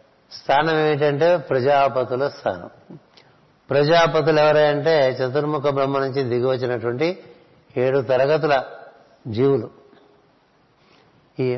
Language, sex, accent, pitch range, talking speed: Telugu, male, native, 130-155 Hz, 75 wpm